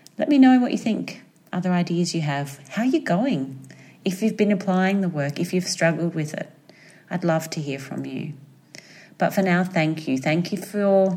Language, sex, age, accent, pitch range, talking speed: English, female, 30-49, Australian, 135-170 Hz, 210 wpm